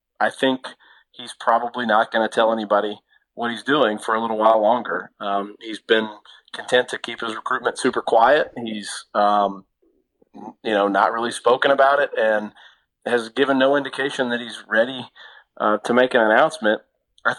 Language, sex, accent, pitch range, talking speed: English, male, American, 110-130 Hz, 175 wpm